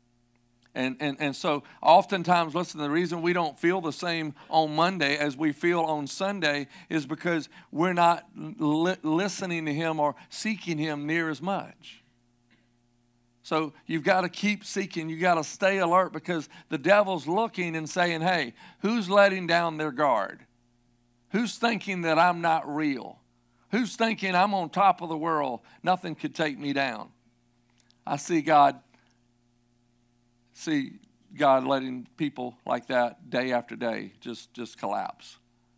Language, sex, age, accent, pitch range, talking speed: English, male, 50-69, American, 120-170 Hz, 155 wpm